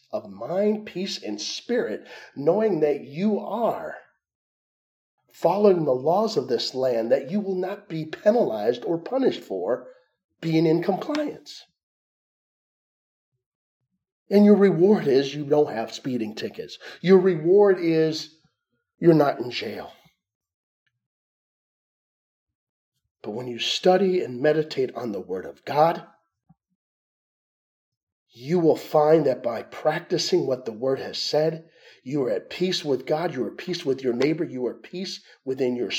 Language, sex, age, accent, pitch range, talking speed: English, male, 40-59, American, 135-195 Hz, 140 wpm